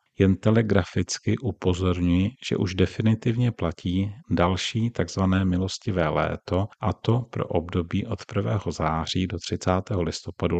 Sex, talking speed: male, 120 wpm